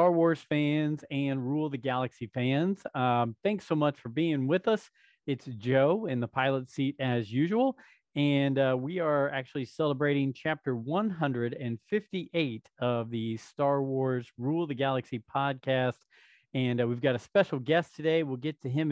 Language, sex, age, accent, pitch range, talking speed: English, male, 40-59, American, 130-165 Hz, 165 wpm